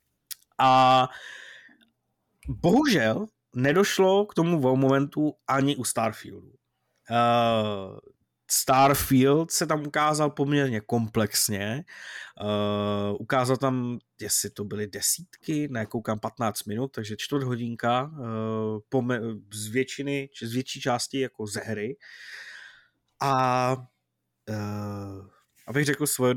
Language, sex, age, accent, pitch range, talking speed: Czech, male, 20-39, native, 110-135 Hz, 85 wpm